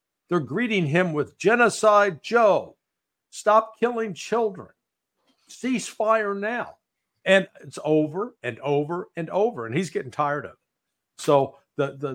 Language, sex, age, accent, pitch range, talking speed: English, male, 60-79, American, 125-180 Hz, 140 wpm